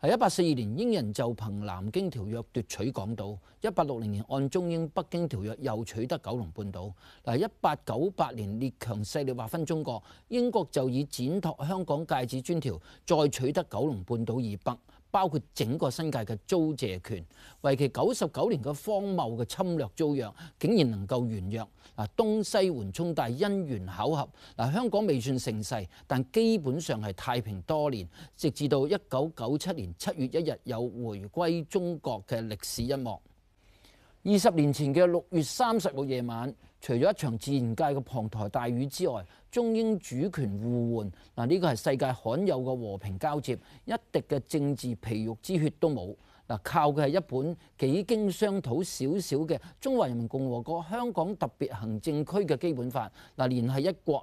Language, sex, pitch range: Chinese, male, 115-165 Hz